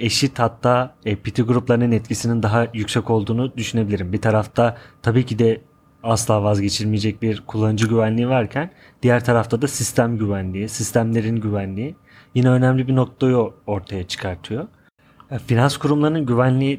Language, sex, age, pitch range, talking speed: Turkish, male, 30-49, 110-130 Hz, 130 wpm